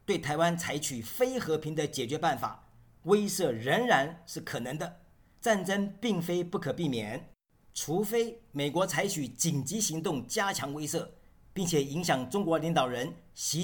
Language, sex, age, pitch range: Chinese, male, 50-69, 140-185 Hz